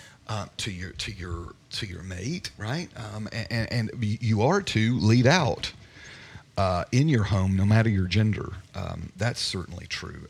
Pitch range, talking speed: 100-140 Hz, 175 wpm